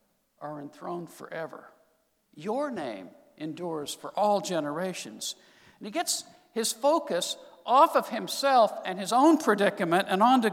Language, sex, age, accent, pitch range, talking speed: English, male, 60-79, American, 175-245 Hz, 130 wpm